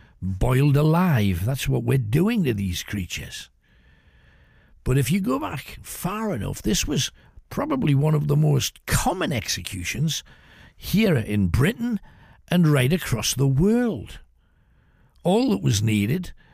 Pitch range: 105-155 Hz